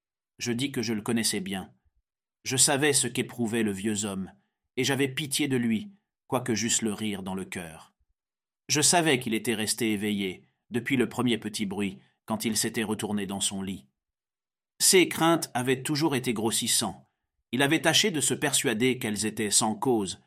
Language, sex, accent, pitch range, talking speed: French, male, French, 100-130 Hz, 180 wpm